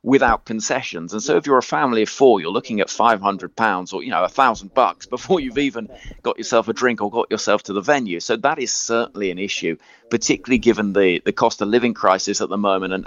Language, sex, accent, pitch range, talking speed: English, male, British, 100-125 Hz, 240 wpm